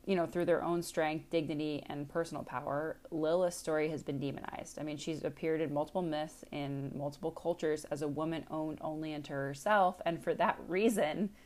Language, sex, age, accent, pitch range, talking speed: English, female, 20-39, American, 150-175 Hz, 190 wpm